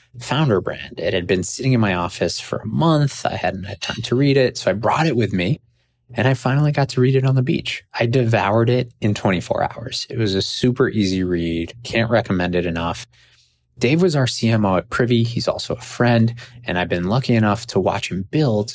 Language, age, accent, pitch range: English, 20-39, American, 100-125 Hz